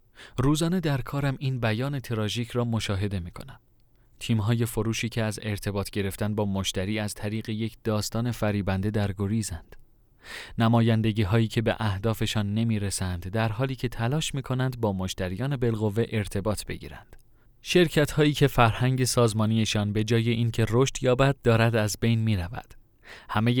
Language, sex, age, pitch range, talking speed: Persian, male, 30-49, 105-130 Hz, 150 wpm